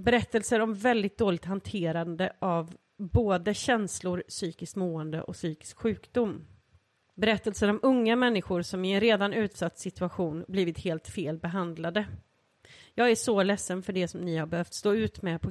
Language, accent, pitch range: Swedish, native, 170-220 Hz